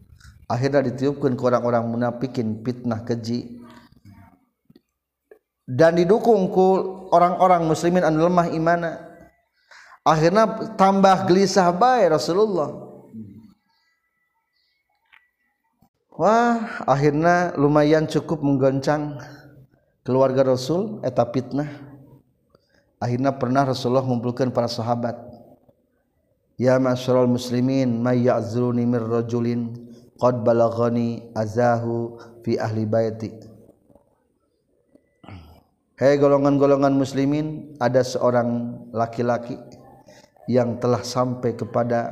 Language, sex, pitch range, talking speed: Indonesian, male, 120-150 Hz, 80 wpm